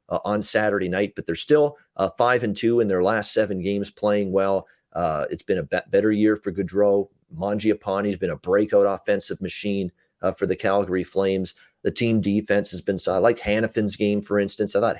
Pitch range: 100-125 Hz